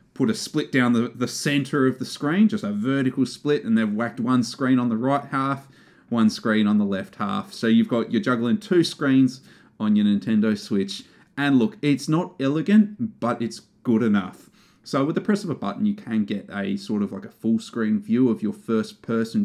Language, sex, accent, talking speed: English, male, Australian, 220 wpm